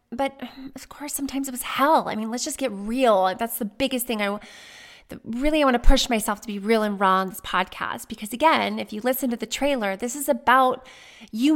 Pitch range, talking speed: 200-265 Hz, 235 wpm